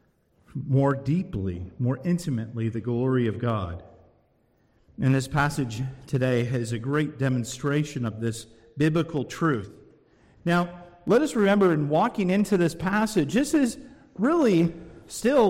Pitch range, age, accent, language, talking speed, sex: 130-205 Hz, 50-69, American, English, 130 wpm, male